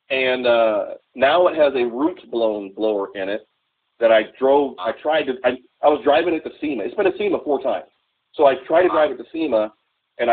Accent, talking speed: American, 230 wpm